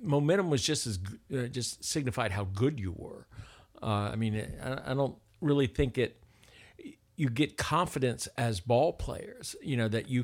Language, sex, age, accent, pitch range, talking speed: English, male, 50-69, American, 115-155 Hz, 175 wpm